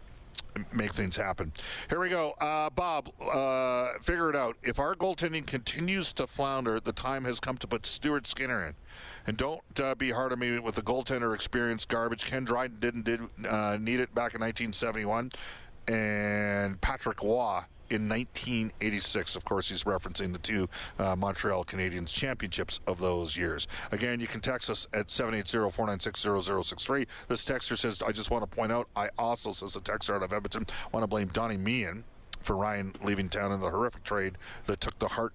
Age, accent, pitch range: 40-59, American, 100-125 Hz